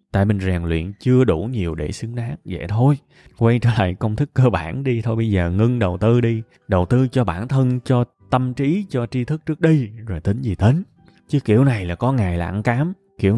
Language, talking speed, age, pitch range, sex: Vietnamese, 240 wpm, 20-39, 100-150 Hz, male